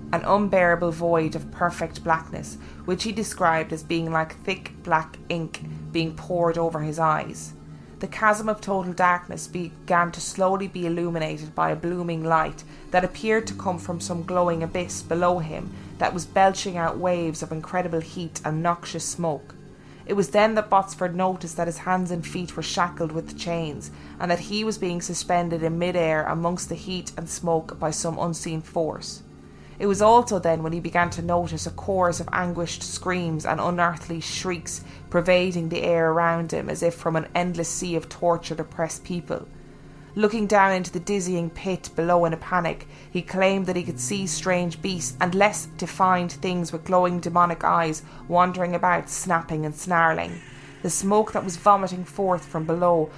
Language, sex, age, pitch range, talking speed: English, female, 20-39, 160-180 Hz, 180 wpm